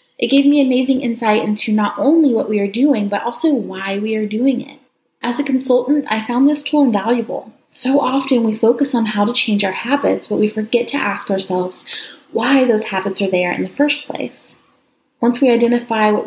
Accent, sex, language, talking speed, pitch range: American, female, English, 205 wpm, 205-270 Hz